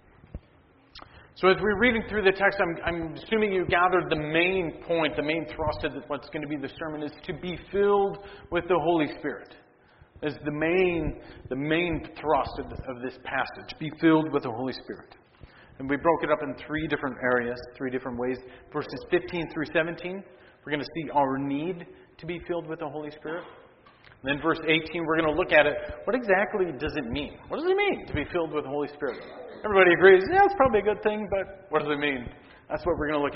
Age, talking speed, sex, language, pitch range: 40-59, 225 wpm, male, English, 140-175 Hz